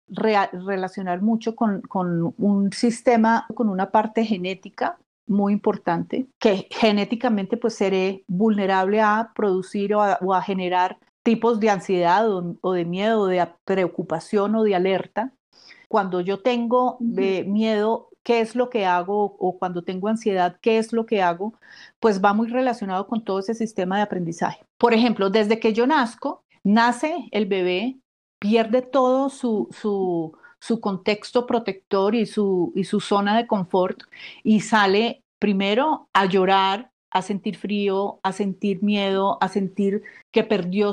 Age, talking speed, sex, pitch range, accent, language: 40-59, 150 wpm, female, 195-230 Hz, Colombian, Spanish